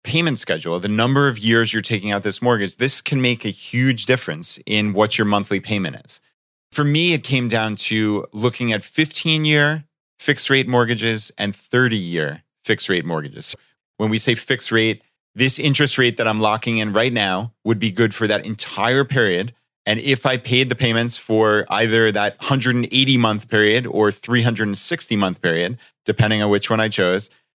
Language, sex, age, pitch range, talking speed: English, male, 30-49, 105-130 Hz, 185 wpm